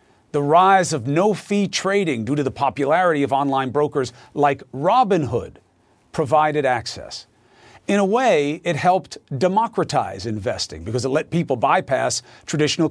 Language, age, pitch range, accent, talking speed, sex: English, 40-59, 130-180 Hz, American, 135 wpm, male